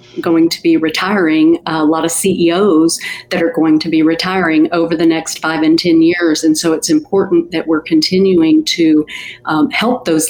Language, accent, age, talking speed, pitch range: English, American, 50-69, 185 wpm, 165-235 Hz